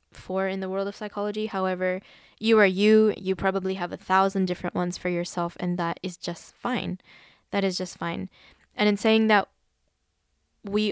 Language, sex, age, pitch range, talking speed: English, female, 10-29, 180-205 Hz, 180 wpm